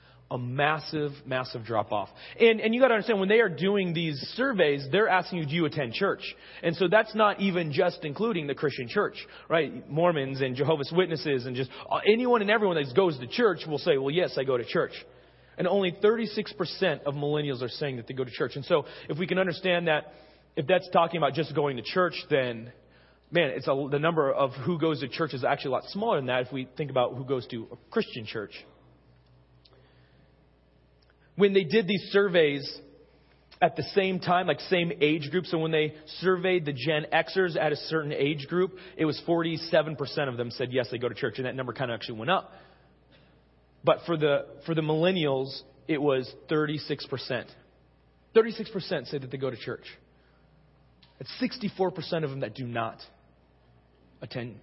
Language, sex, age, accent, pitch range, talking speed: English, male, 30-49, American, 130-180 Hz, 200 wpm